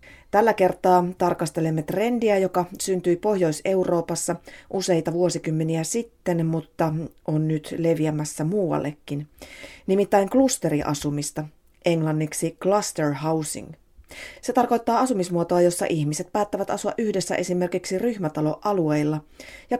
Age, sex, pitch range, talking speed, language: 30-49, female, 155-190 Hz, 95 wpm, Finnish